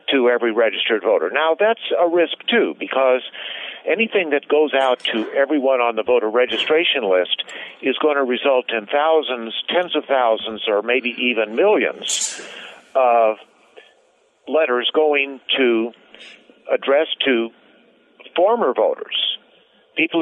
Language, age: English, 50-69